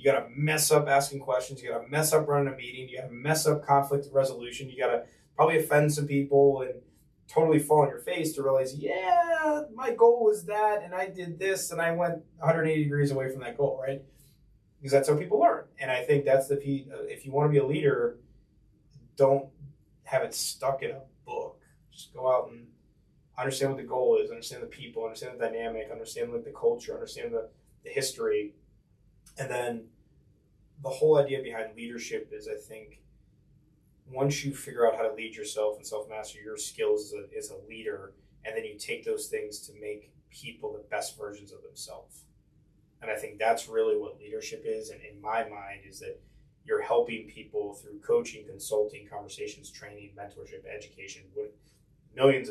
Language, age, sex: English, 20-39, male